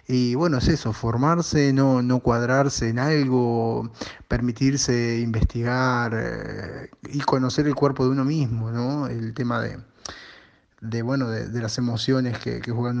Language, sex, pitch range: Spanish, male, 115-130 Hz